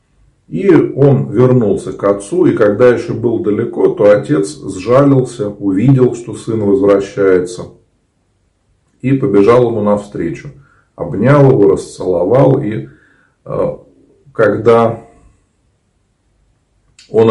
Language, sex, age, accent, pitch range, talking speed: Russian, male, 40-59, native, 100-135 Hz, 95 wpm